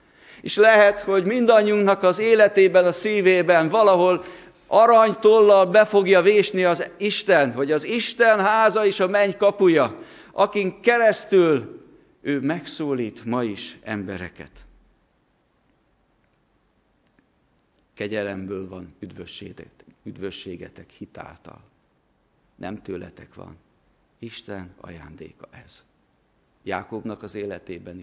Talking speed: 95 wpm